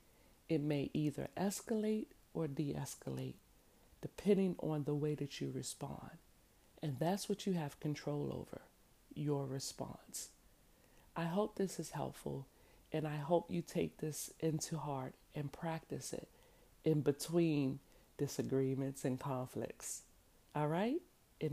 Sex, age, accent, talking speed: female, 40-59, American, 130 wpm